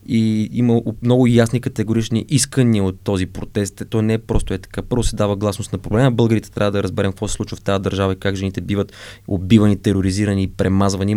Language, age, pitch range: Bulgarian, 20-39, 100-120 Hz